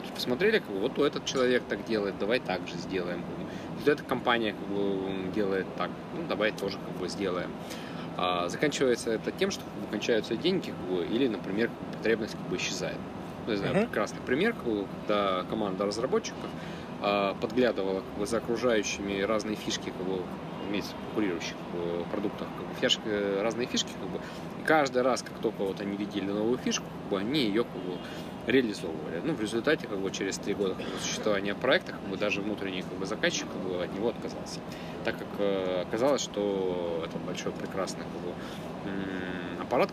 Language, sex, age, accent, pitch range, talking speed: Russian, male, 20-39, native, 90-105 Hz, 130 wpm